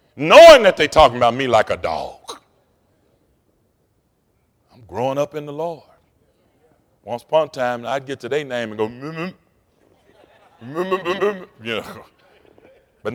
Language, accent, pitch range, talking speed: English, American, 120-150 Hz, 135 wpm